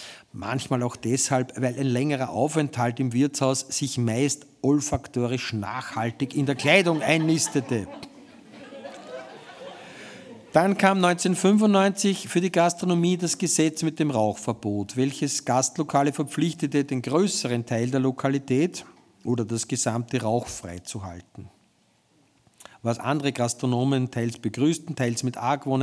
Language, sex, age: German, male, 50-69